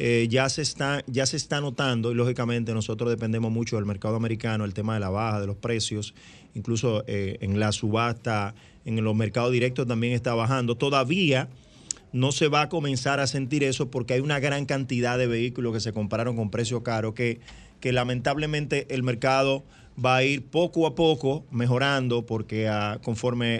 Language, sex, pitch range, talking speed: Spanish, male, 115-135 Hz, 180 wpm